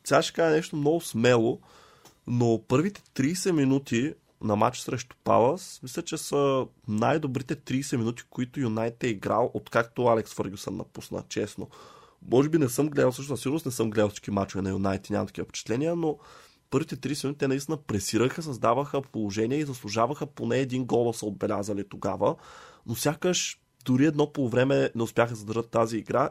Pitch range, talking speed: 115-140 Hz, 165 wpm